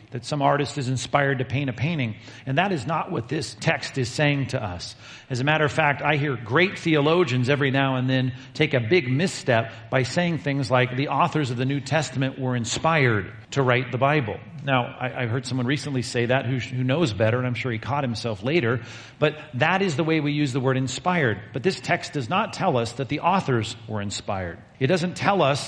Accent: American